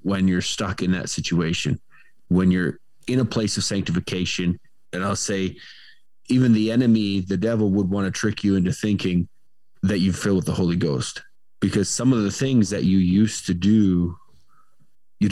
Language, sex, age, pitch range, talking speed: English, male, 20-39, 95-110 Hz, 180 wpm